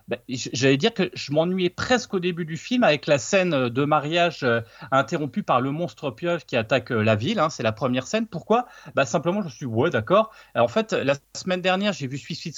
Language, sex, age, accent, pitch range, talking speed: French, male, 30-49, French, 130-205 Hz, 230 wpm